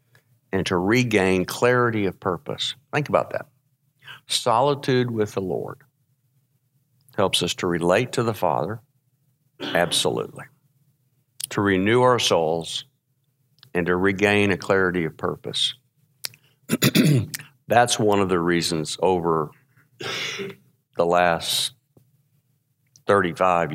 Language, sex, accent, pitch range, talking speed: English, male, American, 90-135 Hz, 105 wpm